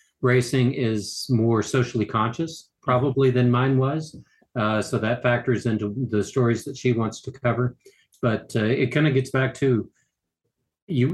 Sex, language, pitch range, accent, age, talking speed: male, English, 110-125 Hz, American, 50-69, 160 wpm